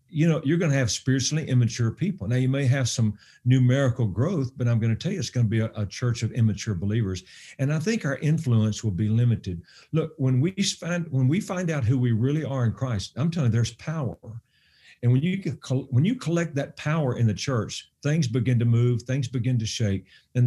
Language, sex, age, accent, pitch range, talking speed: English, male, 50-69, American, 115-155 Hz, 230 wpm